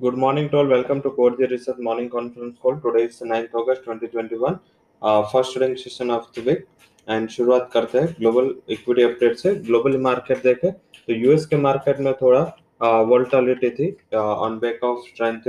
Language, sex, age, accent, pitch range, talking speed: English, male, 20-39, Indian, 120-130 Hz, 175 wpm